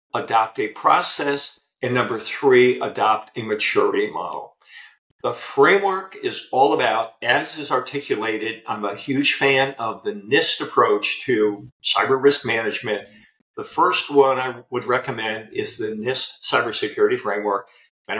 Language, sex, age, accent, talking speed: English, male, 50-69, American, 140 wpm